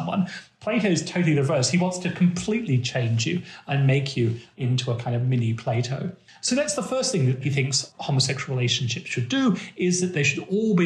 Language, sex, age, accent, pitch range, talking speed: English, male, 40-59, British, 135-195 Hz, 210 wpm